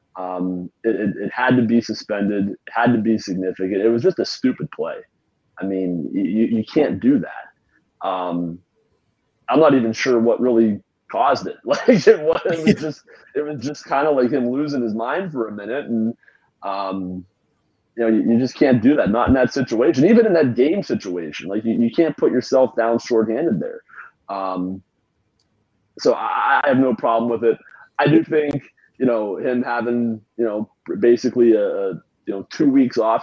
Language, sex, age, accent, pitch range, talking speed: English, male, 30-49, American, 100-120 Hz, 190 wpm